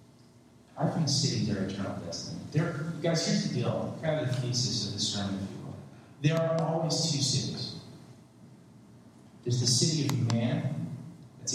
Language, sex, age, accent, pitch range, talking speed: English, male, 40-59, American, 115-155 Hz, 165 wpm